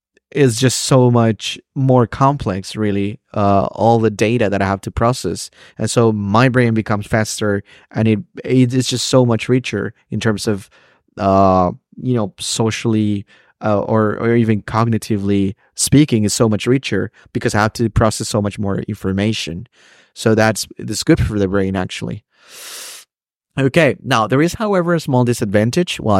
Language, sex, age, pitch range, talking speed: English, male, 30-49, 100-120 Hz, 165 wpm